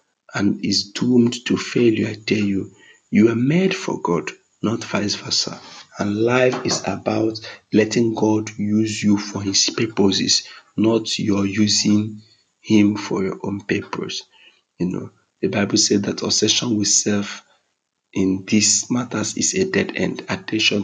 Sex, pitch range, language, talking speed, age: male, 100-115 Hz, English, 150 wpm, 50-69